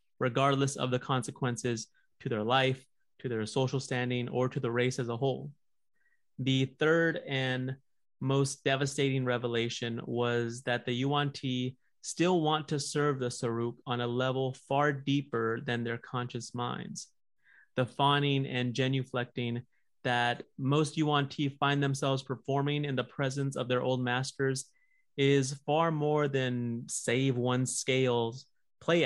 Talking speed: 140 wpm